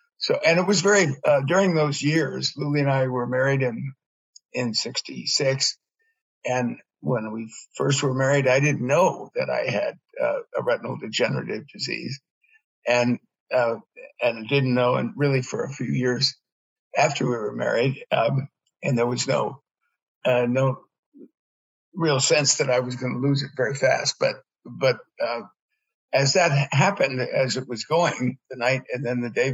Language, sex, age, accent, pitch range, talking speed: English, male, 60-79, American, 125-165 Hz, 170 wpm